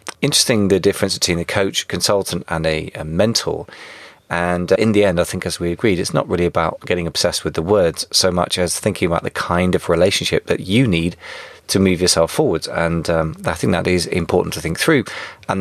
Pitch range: 80-95 Hz